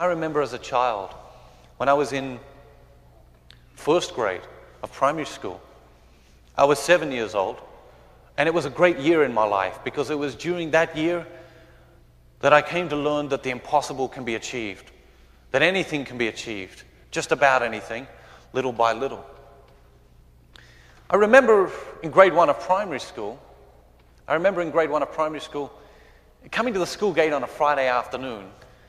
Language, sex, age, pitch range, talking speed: English, male, 30-49, 110-155 Hz, 170 wpm